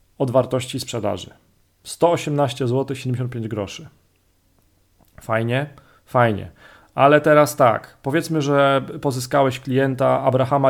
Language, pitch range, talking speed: Polish, 115-145 Hz, 100 wpm